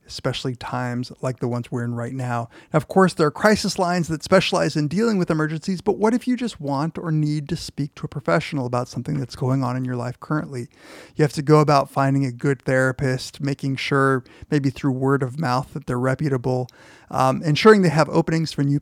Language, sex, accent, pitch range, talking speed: English, male, American, 130-165 Hz, 220 wpm